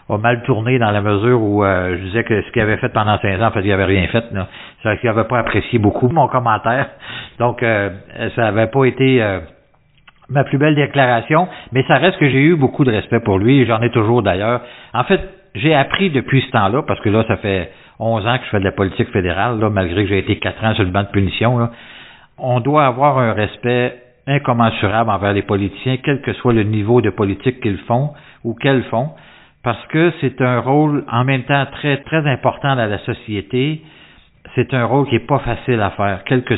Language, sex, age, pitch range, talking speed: French, male, 50-69, 105-130 Hz, 230 wpm